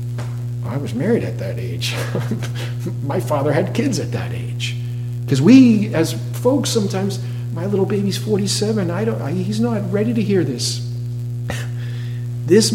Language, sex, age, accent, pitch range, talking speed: English, male, 50-69, American, 120-130 Hz, 140 wpm